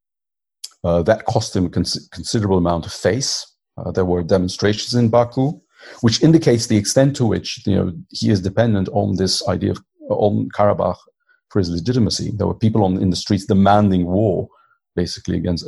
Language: Dutch